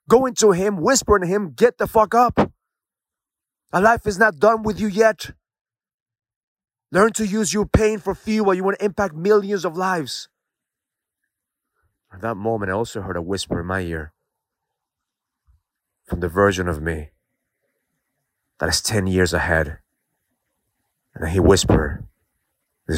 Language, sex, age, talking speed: English, male, 30-49, 150 wpm